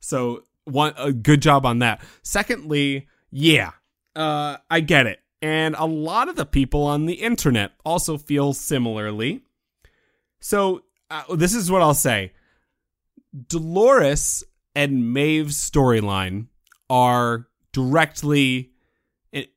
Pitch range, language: 120-155 Hz, English